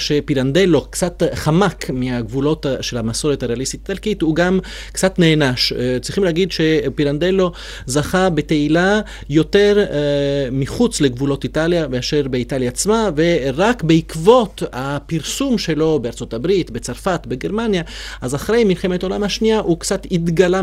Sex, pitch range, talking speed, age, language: male, 135-200 Hz, 115 wpm, 30-49, Hebrew